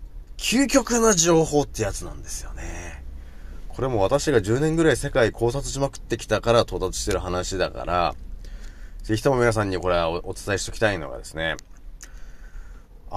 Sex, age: male, 30-49